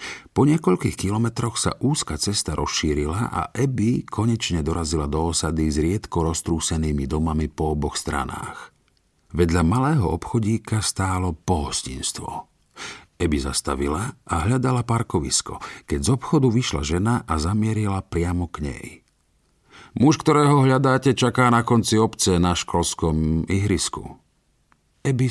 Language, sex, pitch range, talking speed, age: Slovak, male, 75-105 Hz, 120 wpm, 50-69